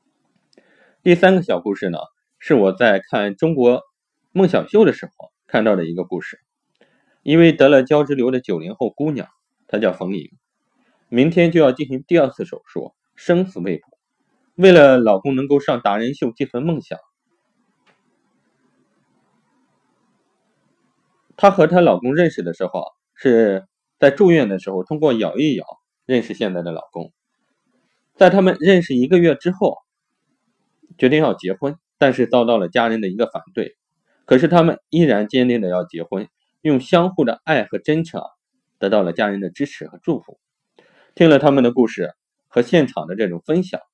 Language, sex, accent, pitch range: Chinese, male, native, 120-175 Hz